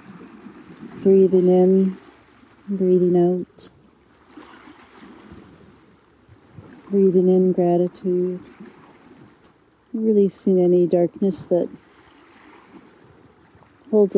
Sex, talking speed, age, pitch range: female, 50 wpm, 50-69, 190-220 Hz